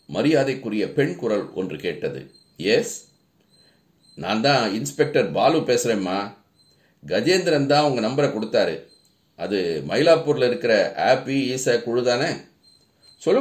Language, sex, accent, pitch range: Tamil, male, native, 125-180 Hz